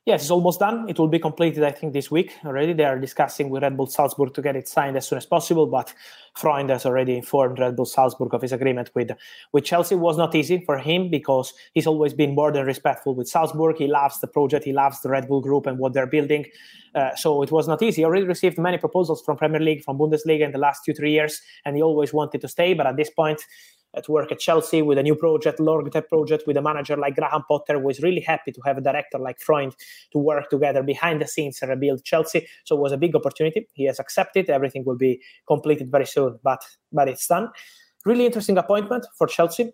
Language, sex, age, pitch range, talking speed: English, male, 20-39, 135-160 Hz, 245 wpm